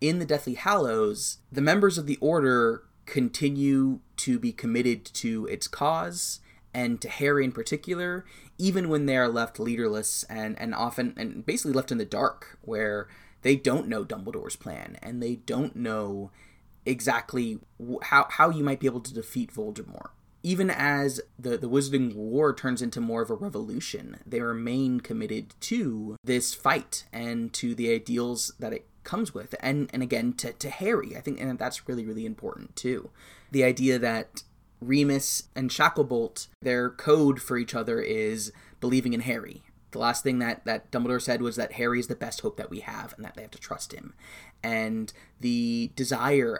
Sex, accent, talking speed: male, American, 180 wpm